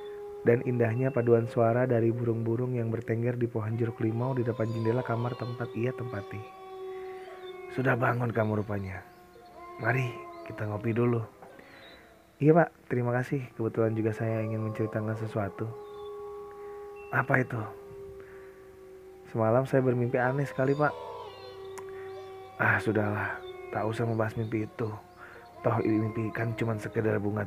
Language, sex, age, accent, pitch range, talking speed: Indonesian, male, 20-39, native, 105-145 Hz, 130 wpm